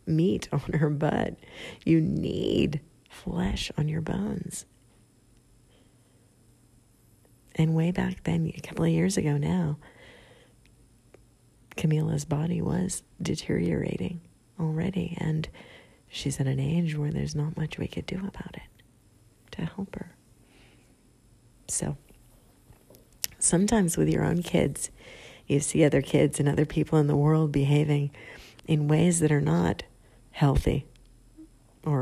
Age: 40-59